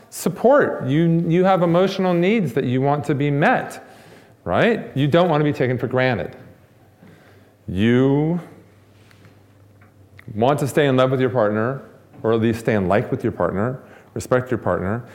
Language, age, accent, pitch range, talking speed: English, 40-59, American, 105-145 Hz, 165 wpm